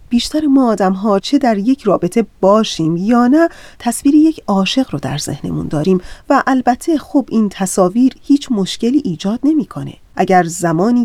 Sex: female